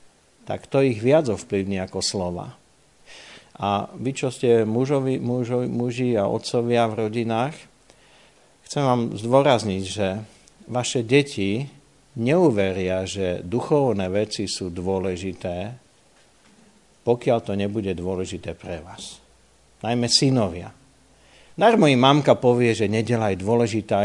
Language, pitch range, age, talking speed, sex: Slovak, 105-145 Hz, 50-69, 110 wpm, male